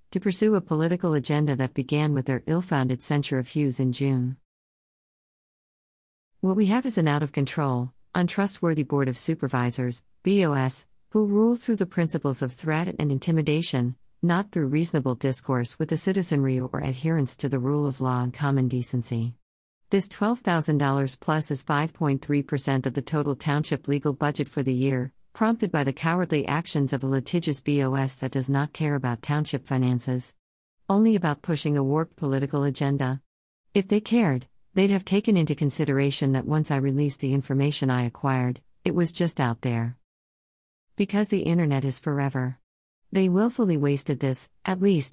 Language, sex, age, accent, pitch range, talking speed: English, female, 50-69, American, 135-165 Hz, 165 wpm